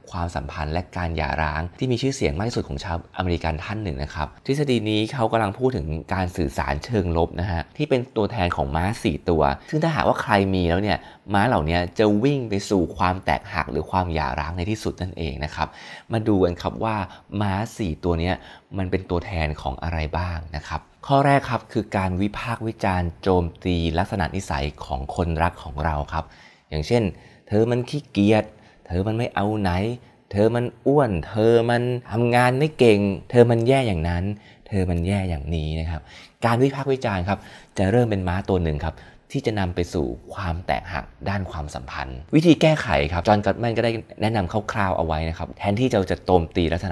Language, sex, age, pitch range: Thai, male, 20-39, 85-110 Hz